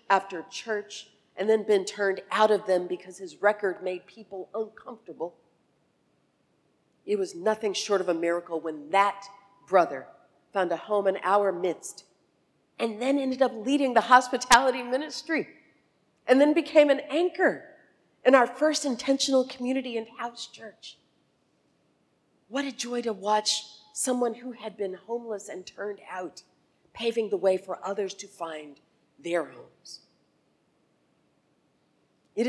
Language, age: English, 40-59